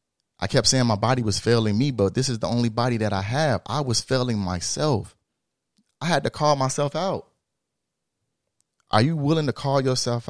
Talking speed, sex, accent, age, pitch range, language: 190 wpm, male, American, 30-49, 90-120 Hz, English